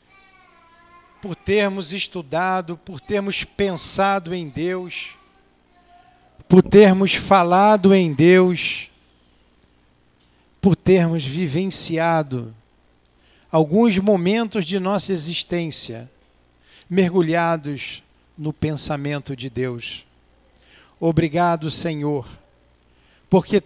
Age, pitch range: 50-69, 125-195 Hz